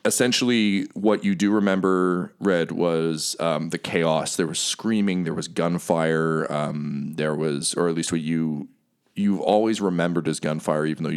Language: English